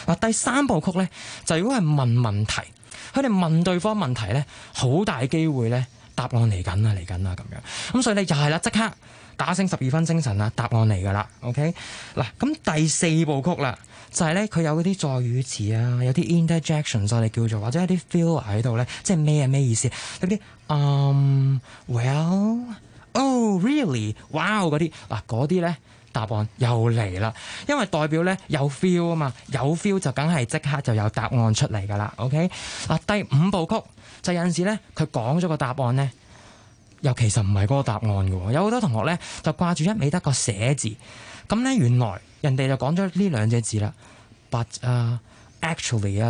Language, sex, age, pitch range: Chinese, male, 20-39, 115-175 Hz